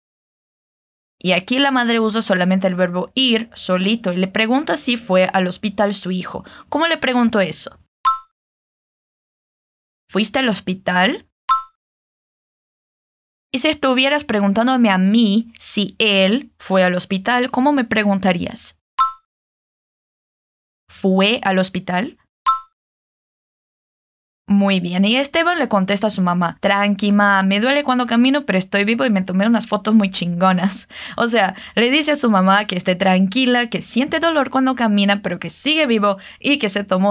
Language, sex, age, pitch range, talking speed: Portuguese, female, 10-29, 195-255 Hz, 145 wpm